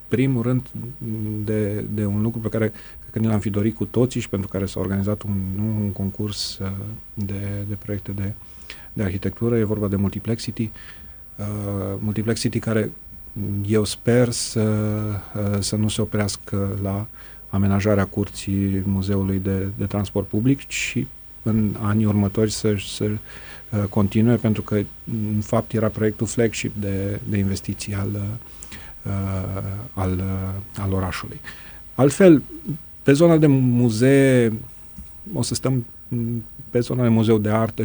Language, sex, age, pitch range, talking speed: Romanian, male, 40-59, 100-120 Hz, 140 wpm